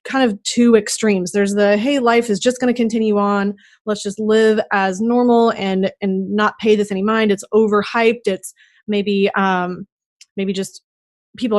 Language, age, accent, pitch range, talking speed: English, 30-49, American, 195-225 Hz, 175 wpm